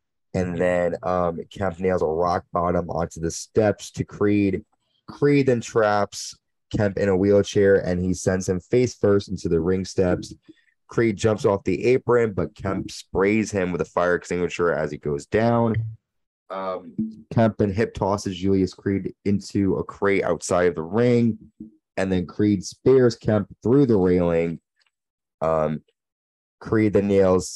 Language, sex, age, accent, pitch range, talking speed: English, male, 20-39, American, 90-110 Hz, 160 wpm